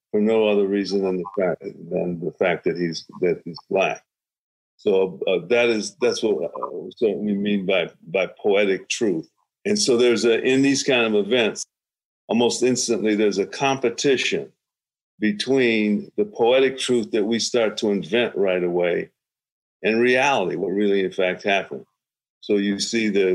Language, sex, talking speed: English, male, 165 wpm